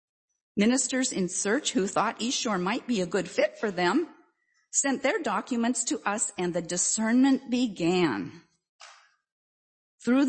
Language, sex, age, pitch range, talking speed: English, female, 50-69, 180-260 Hz, 140 wpm